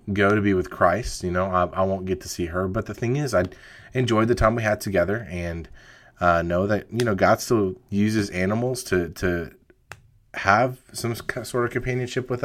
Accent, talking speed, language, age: American, 205 wpm, English, 30-49